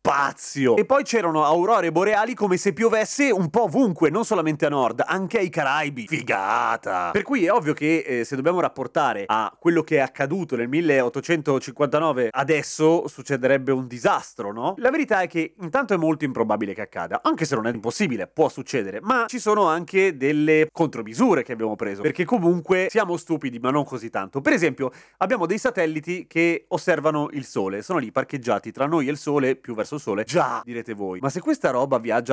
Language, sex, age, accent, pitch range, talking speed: Italian, male, 30-49, native, 130-180 Hz, 190 wpm